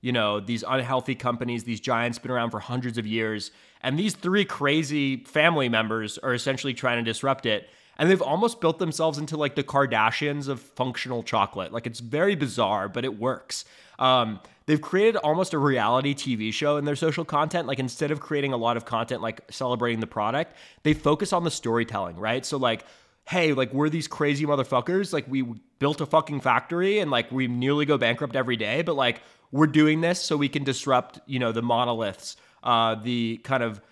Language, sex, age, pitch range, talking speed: English, male, 20-39, 120-150 Hz, 200 wpm